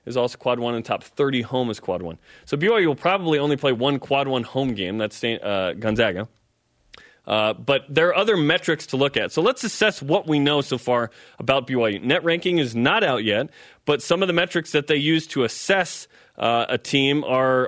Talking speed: 220 wpm